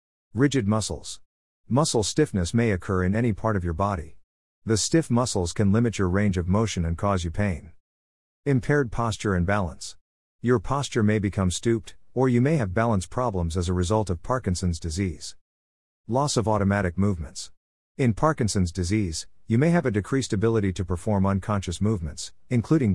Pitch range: 85-115 Hz